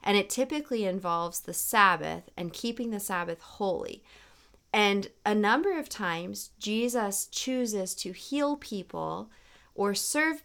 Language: English